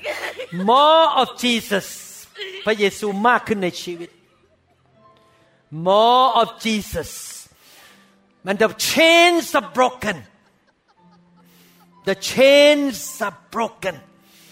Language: Thai